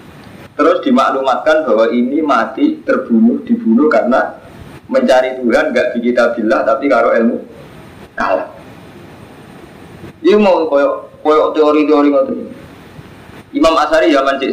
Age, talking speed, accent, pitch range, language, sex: 20-39, 105 wpm, native, 120-155 Hz, Indonesian, male